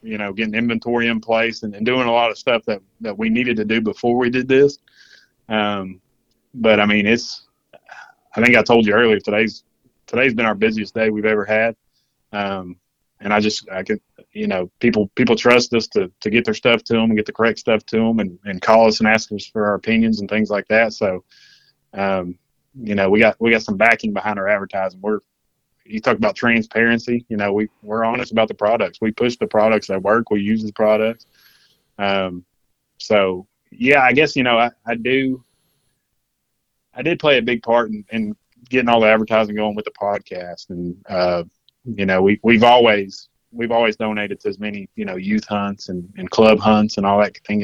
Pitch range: 100-115 Hz